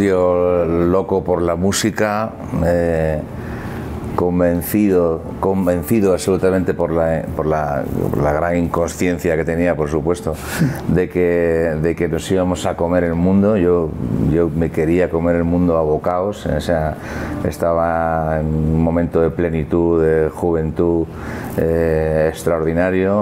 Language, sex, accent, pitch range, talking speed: Spanish, male, Spanish, 80-90 Hz, 130 wpm